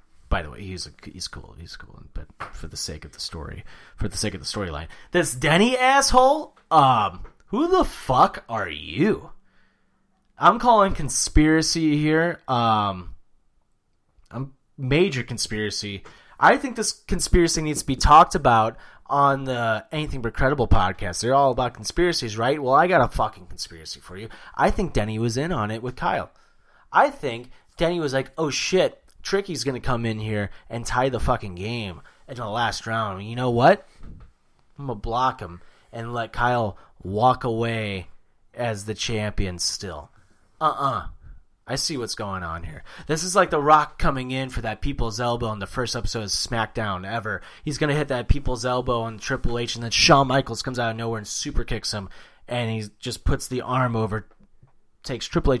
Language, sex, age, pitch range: English, male, 30-49, 110-140 Hz